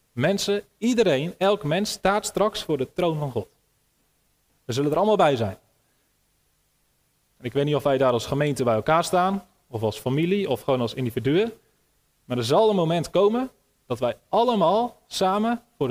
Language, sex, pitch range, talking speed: Dutch, male, 130-190 Hz, 175 wpm